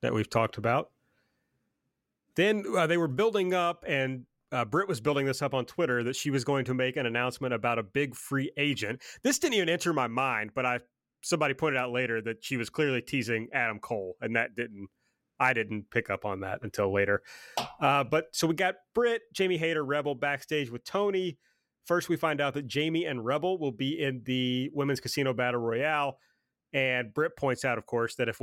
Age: 30-49